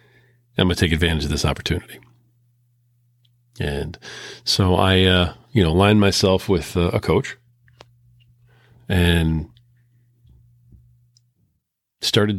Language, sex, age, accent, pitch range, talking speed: English, male, 40-59, American, 85-115 Hz, 105 wpm